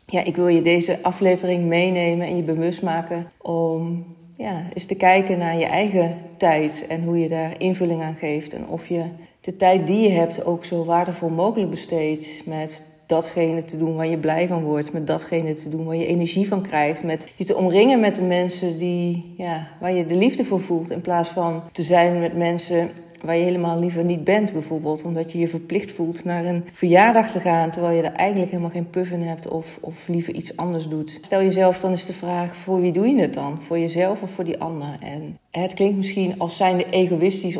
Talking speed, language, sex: 220 wpm, Dutch, female